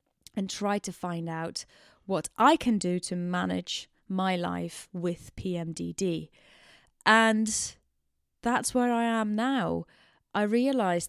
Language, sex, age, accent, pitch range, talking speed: English, female, 20-39, British, 185-220 Hz, 125 wpm